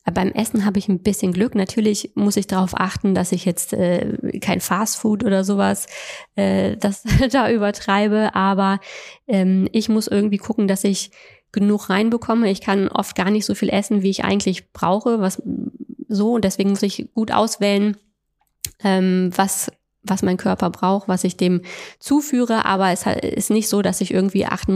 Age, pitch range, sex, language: 20-39, 185-210 Hz, female, German